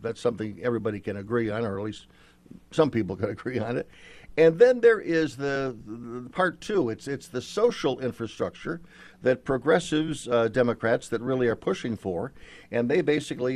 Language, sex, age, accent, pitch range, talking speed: English, male, 50-69, American, 110-140 Hz, 175 wpm